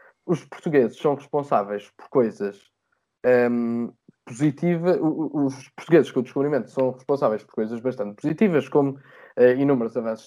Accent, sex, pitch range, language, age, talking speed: Brazilian, male, 125-160 Hz, Portuguese, 20-39, 135 wpm